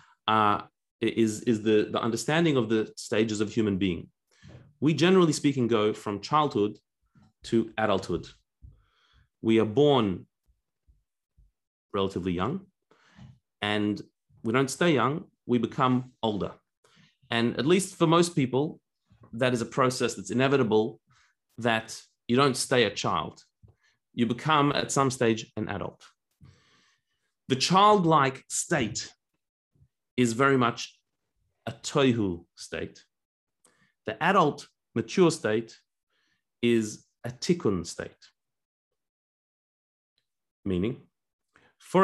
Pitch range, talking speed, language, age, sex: 110-150 Hz, 110 wpm, English, 30-49, male